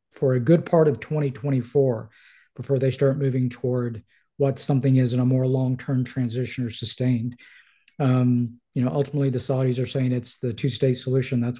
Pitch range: 125-145 Hz